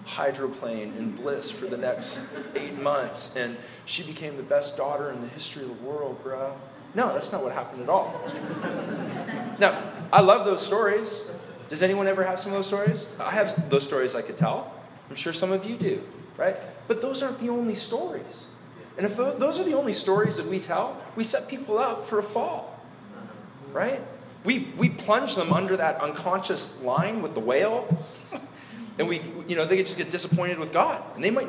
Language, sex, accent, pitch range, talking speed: English, male, American, 150-210 Hz, 195 wpm